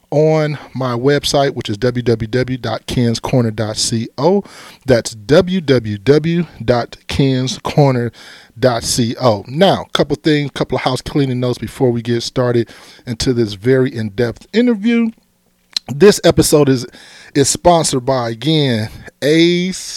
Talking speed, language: 100 wpm, English